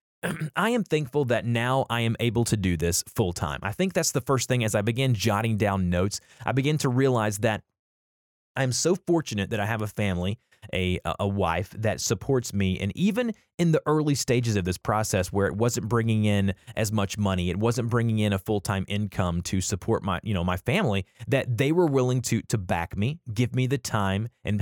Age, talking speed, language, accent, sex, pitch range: 30-49, 215 wpm, English, American, male, 95-130 Hz